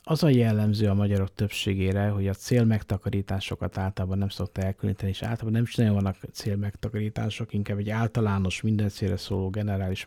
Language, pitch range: Hungarian, 95-115 Hz